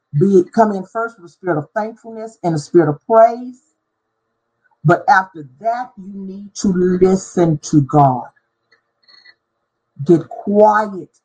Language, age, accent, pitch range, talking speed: English, 50-69, American, 145-220 Hz, 130 wpm